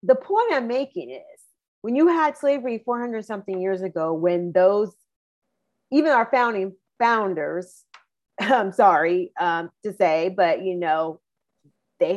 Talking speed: 140 wpm